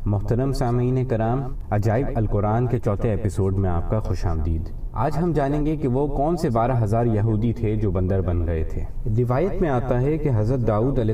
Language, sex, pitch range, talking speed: Urdu, male, 105-135 Hz, 205 wpm